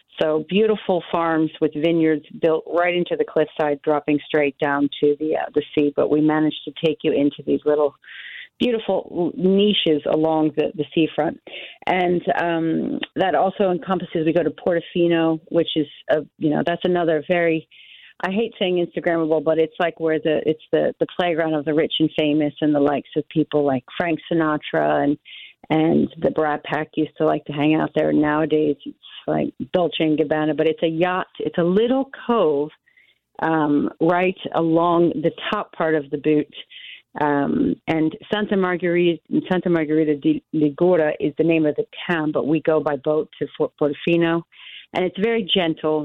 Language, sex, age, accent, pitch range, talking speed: English, female, 40-59, American, 150-175 Hz, 175 wpm